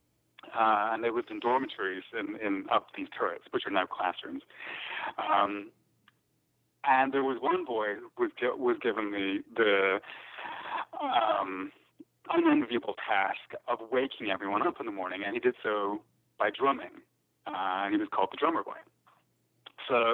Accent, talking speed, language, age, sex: American, 155 wpm, English, 40-59, male